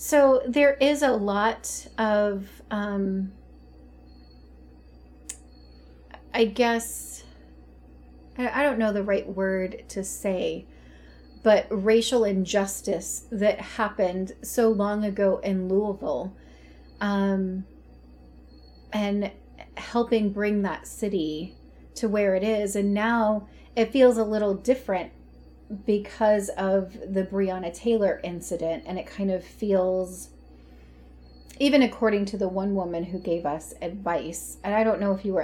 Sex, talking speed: female, 120 wpm